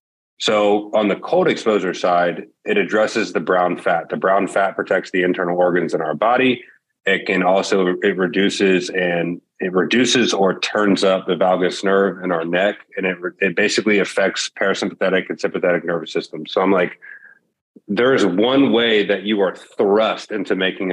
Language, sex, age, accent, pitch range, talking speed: English, male, 30-49, American, 90-105 Hz, 175 wpm